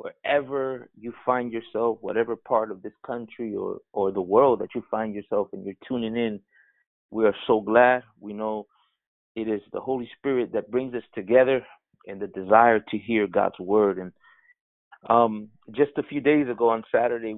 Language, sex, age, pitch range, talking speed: English, male, 30-49, 105-130 Hz, 180 wpm